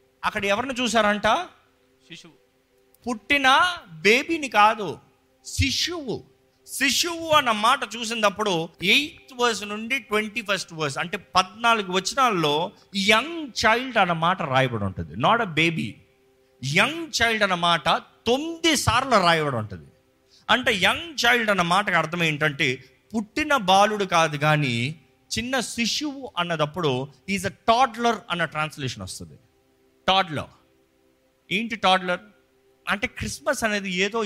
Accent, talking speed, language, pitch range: native, 110 wpm, Telugu, 130-220 Hz